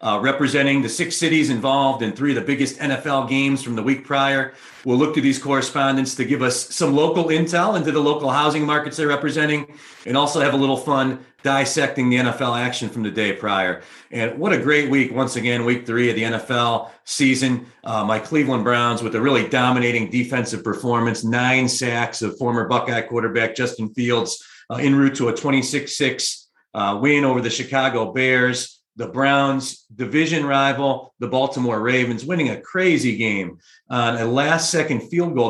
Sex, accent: male, American